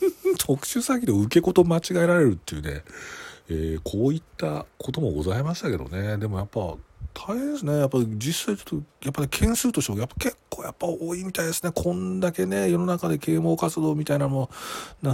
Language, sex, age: Japanese, male, 40-59